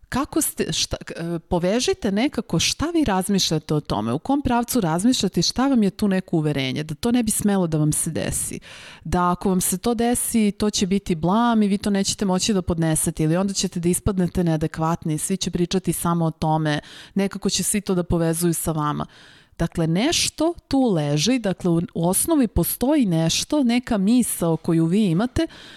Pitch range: 165-215 Hz